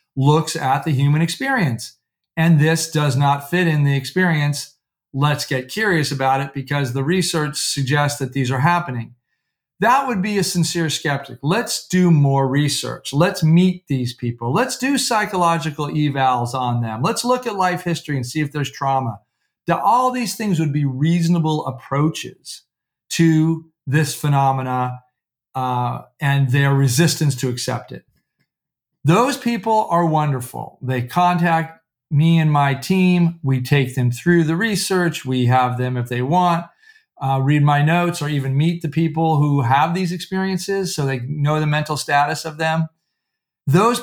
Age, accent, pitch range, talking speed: 40-59, American, 135-175 Hz, 160 wpm